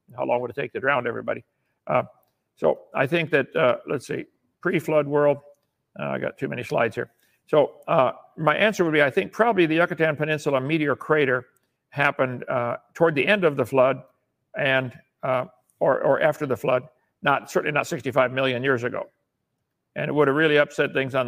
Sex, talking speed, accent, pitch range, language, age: male, 195 wpm, American, 135-160 Hz, English, 60-79